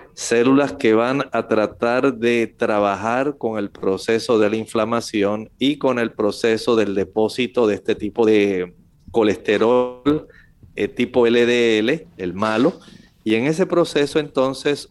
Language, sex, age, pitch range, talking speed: Spanish, male, 40-59, 110-130 Hz, 135 wpm